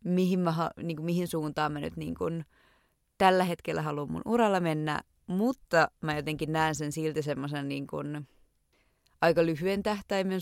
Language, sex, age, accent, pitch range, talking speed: Finnish, female, 20-39, native, 150-175 Hz, 155 wpm